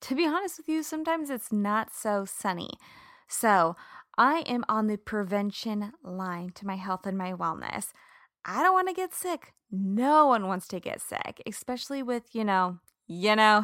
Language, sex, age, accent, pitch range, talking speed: English, female, 20-39, American, 185-255 Hz, 180 wpm